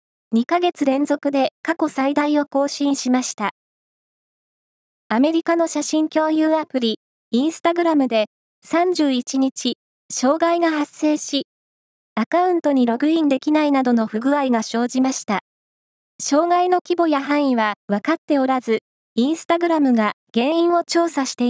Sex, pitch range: female, 255-320 Hz